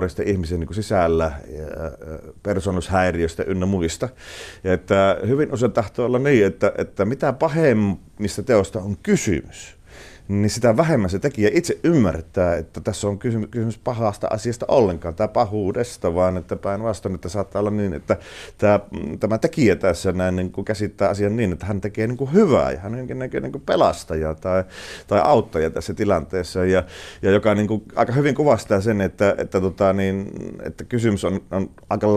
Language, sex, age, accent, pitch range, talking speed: Finnish, male, 30-49, native, 90-110 Hz, 155 wpm